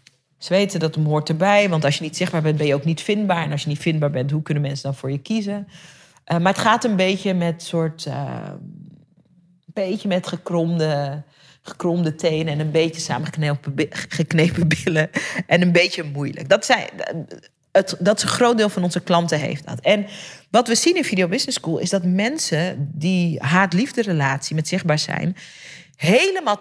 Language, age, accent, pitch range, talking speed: Dutch, 40-59, Dutch, 160-205 Hz, 185 wpm